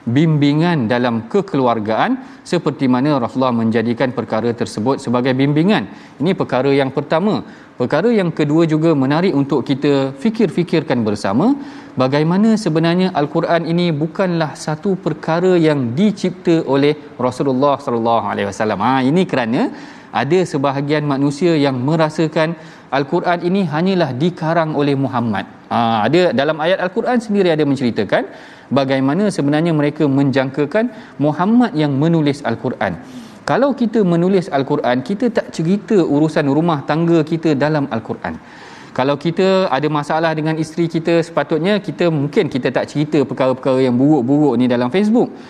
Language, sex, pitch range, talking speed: Malayalam, male, 135-175 Hz, 130 wpm